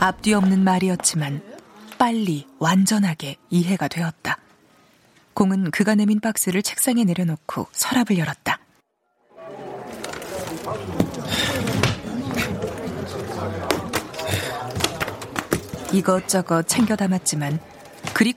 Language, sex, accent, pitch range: Korean, female, native, 170-225 Hz